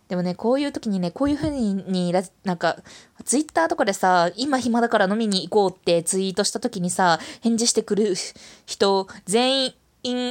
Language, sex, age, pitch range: Japanese, female, 20-39, 195-250 Hz